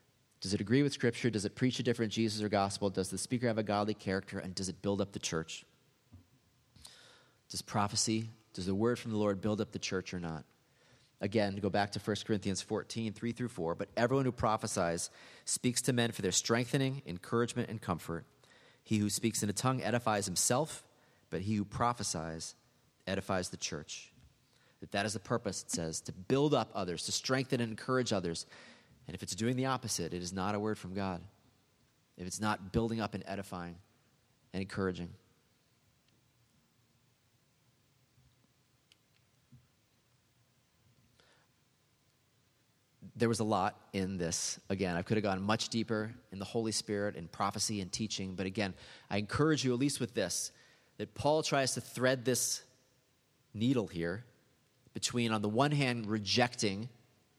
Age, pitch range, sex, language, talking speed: 30-49, 100-125 Hz, male, English, 170 wpm